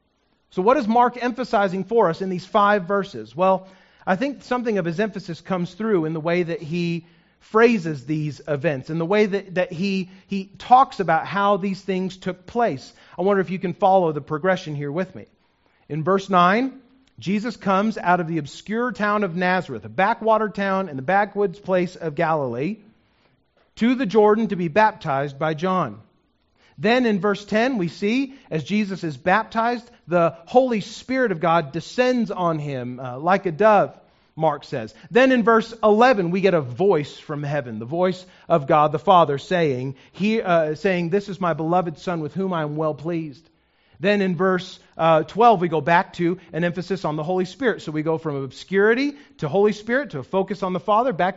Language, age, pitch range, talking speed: English, 40-59, 165-220 Hz, 195 wpm